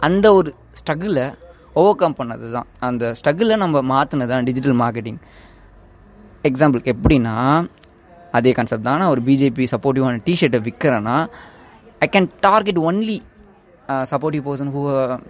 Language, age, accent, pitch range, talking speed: Tamil, 20-39, native, 120-150 Hz, 120 wpm